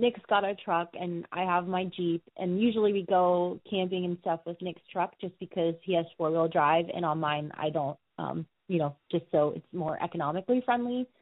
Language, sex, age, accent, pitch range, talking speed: English, female, 20-39, American, 170-215 Hz, 215 wpm